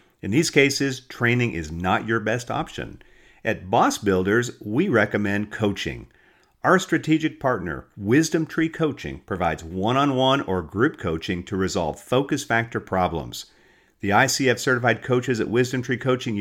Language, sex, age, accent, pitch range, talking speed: English, male, 50-69, American, 95-150 Hz, 145 wpm